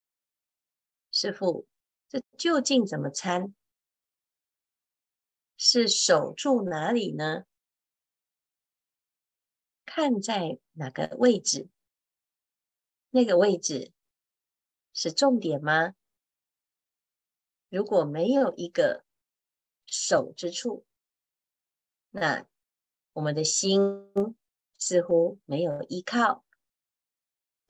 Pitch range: 150-240 Hz